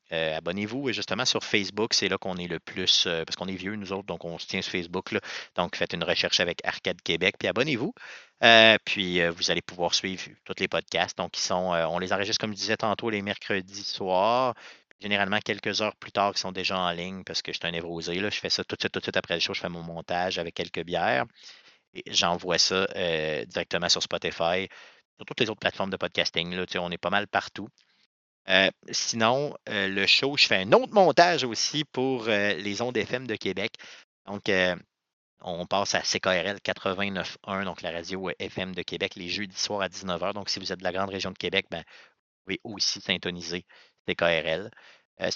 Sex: male